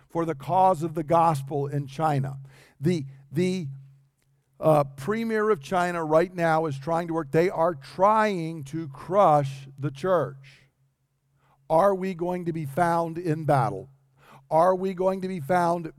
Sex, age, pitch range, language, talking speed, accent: male, 50-69, 135-170 Hz, English, 155 wpm, American